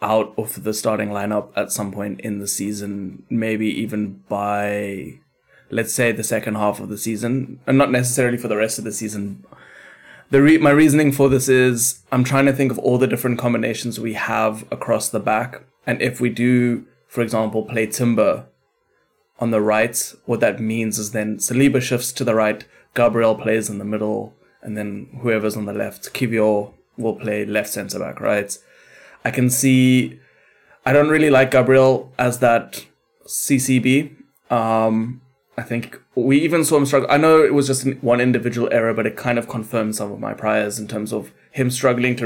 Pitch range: 110-130 Hz